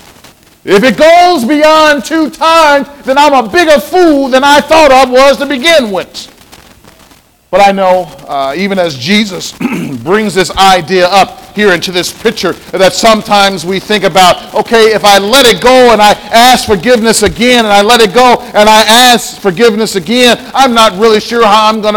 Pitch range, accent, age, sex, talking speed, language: 205-265 Hz, American, 40-59, male, 185 wpm, English